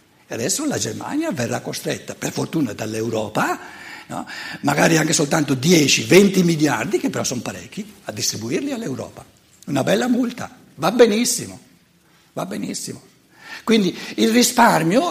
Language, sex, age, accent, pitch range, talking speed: Italian, male, 60-79, native, 140-220 Hz, 125 wpm